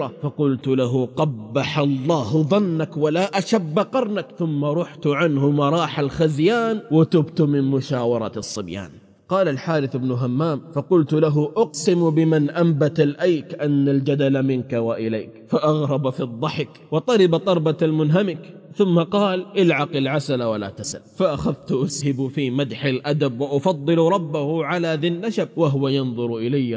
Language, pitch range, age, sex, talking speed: Arabic, 130-165 Hz, 30-49, male, 125 wpm